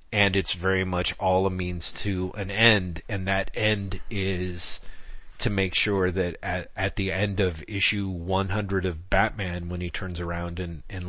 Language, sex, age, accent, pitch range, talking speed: English, male, 30-49, American, 90-115 Hz, 180 wpm